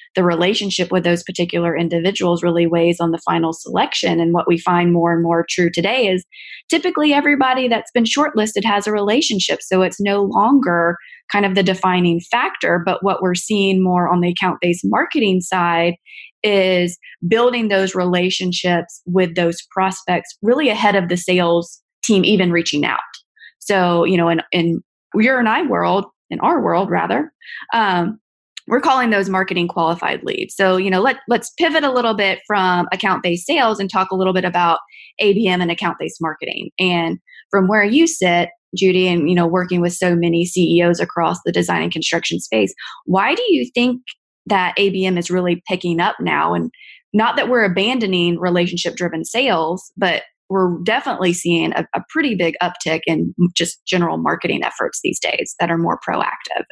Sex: female